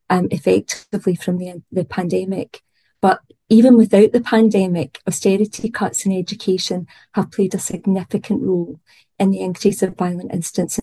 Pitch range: 180-205 Hz